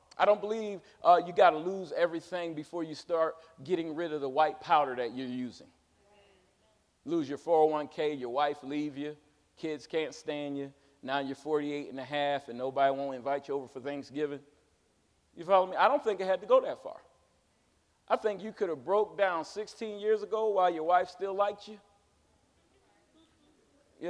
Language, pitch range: English, 155-235 Hz